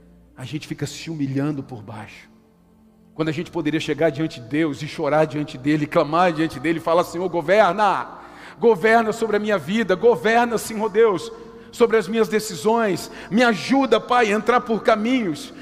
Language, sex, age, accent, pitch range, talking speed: Portuguese, male, 50-69, Brazilian, 170-235 Hz, 175 wpm